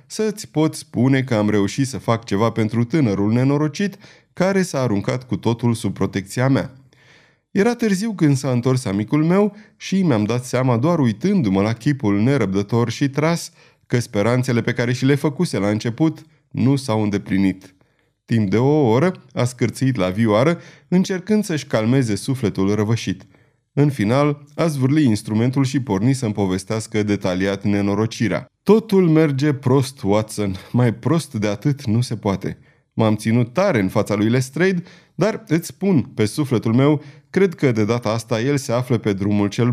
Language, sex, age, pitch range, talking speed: Romanian, male, 30-49, 110-155 Hz, 165 wpm